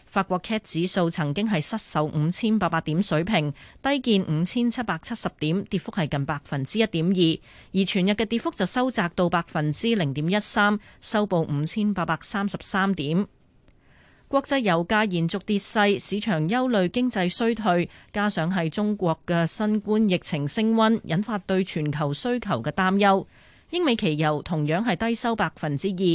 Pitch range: 155-215 Hz